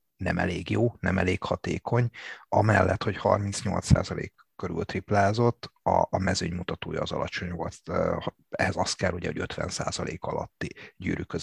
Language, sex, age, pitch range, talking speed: Hungarian, male, 30-49, 95-120 Hz, 120 wpm